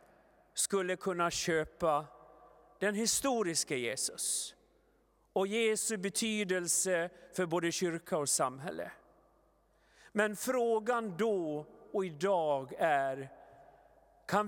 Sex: male